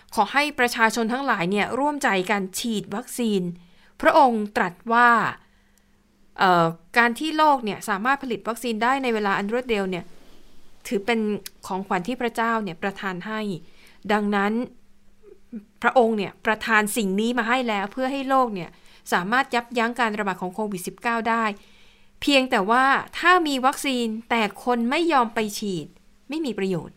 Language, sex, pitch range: Thai, female, 195-245 Hz